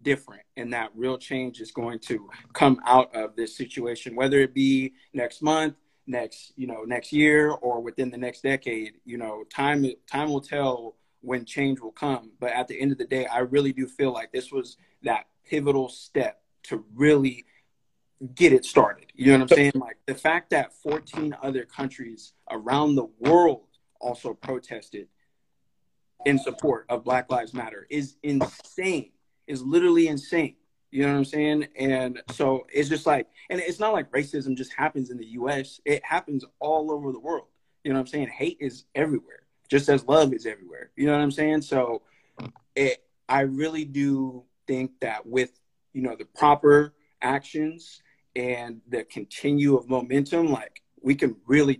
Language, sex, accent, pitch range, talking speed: English, male, American, 130-150 Hz, 180 wpm